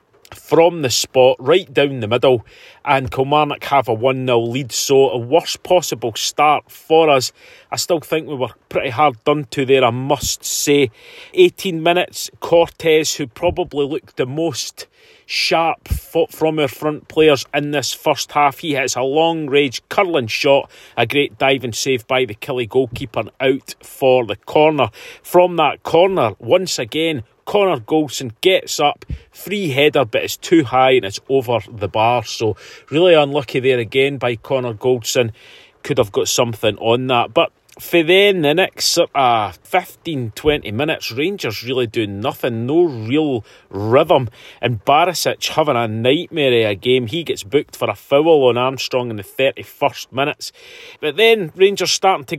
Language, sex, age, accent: English, male, 40-59, British